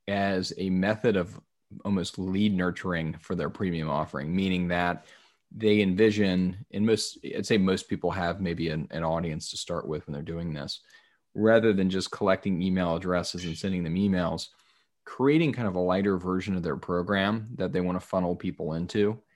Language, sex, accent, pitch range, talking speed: English, male, American, 85-100 Hz, 185 wpm